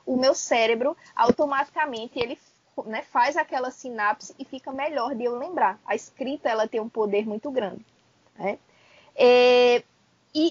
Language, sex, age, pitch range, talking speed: Portuguese, female, 20-39, 235-310 Hz, 150 wpm